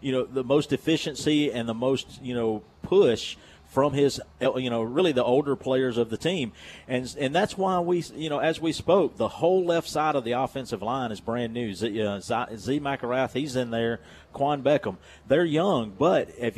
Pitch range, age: 120-150 Hz, 40-59